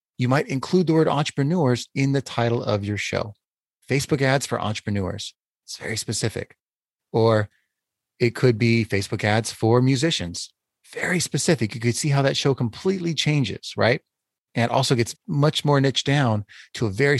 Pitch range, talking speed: 105-135 Hz, 170 wpm